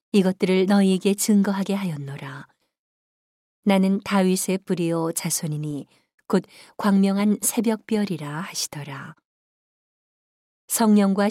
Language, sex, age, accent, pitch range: Korean, female, 40-59, native, 175-205 Hz